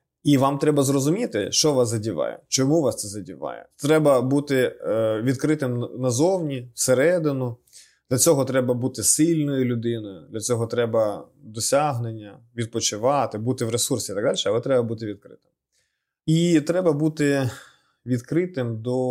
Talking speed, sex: 130 wpm, male